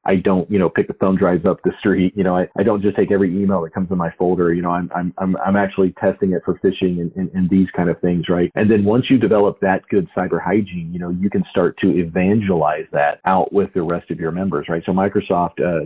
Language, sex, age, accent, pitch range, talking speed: English, male, 40-59, American, 85-100 Hz, 275 wpm